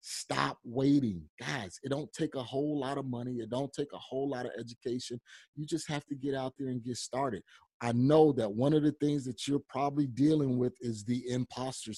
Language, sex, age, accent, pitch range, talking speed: English, male, 30-49, American, 110-145 Hz, 220 wpm